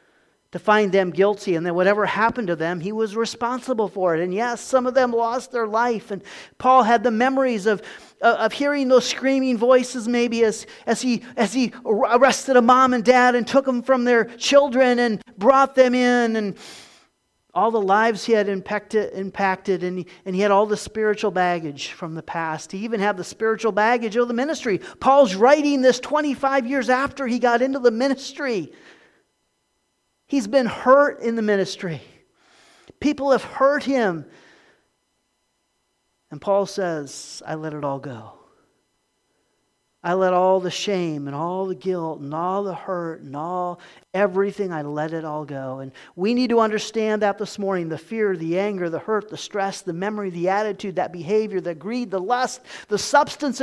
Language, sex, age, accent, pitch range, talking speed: English, male, 40-59, American, 185-255 Hz, 180 wpm